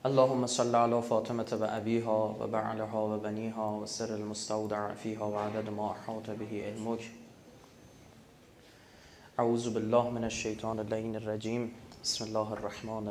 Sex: male